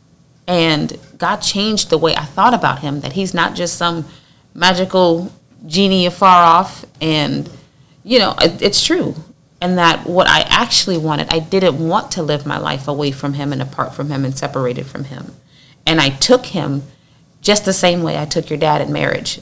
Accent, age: American, 30-49